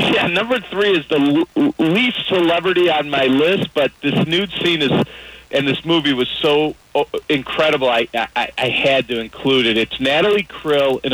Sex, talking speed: male, 170 wpm